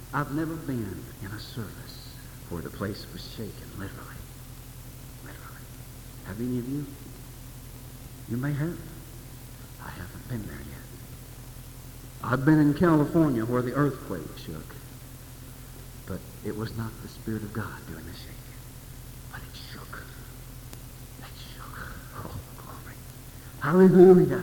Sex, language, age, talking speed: male, English, 60-79, 130 wpm